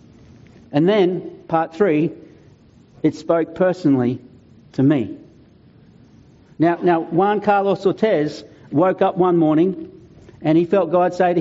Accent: Australian